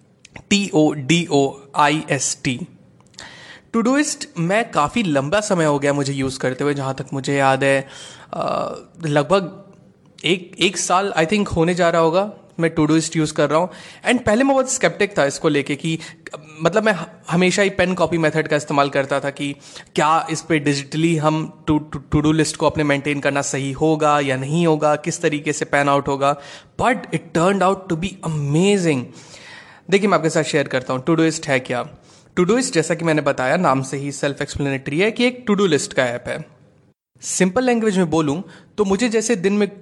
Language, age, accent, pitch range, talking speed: Hindi, 20-39, native, 140-185 Hz, 195 wpm